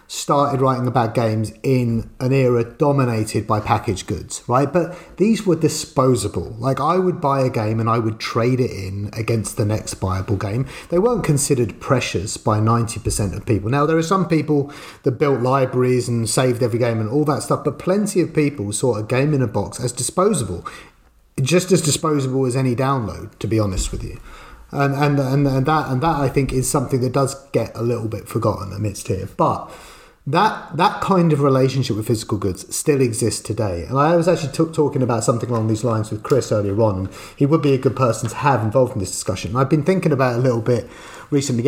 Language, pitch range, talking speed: English, 110-145 Hz, 215 wpm